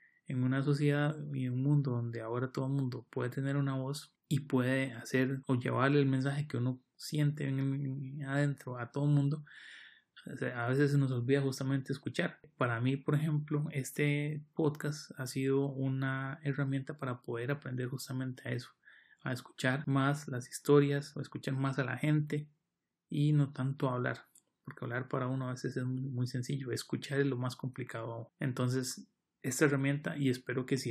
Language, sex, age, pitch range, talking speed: Spanish, male, 30-49, 130-145 Hz, 180 wpm